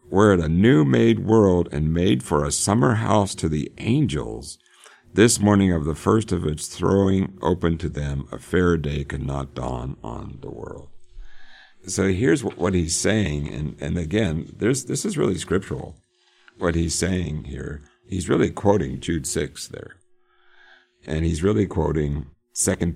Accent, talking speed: American, 160 wpm